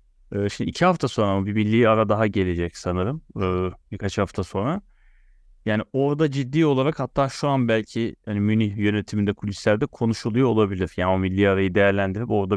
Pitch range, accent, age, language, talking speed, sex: 95-130 Hz, native, 30-49, Turkish, 160 wpm, male